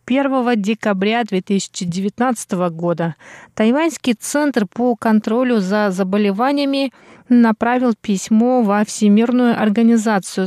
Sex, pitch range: female, 195-240 Hz